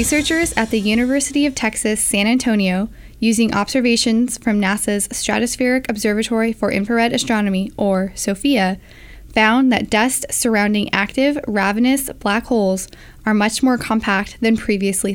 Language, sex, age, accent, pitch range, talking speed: English, female, 10-29, American, 205-245 Hz, 130 wpm